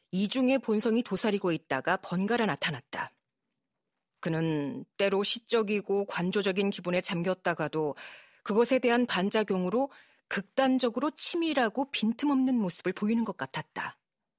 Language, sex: Korean, female